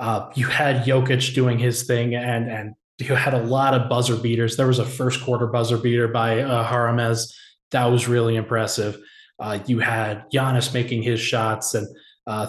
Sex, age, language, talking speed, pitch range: male, 20-39, English, 185 wpm, 115-135 Hz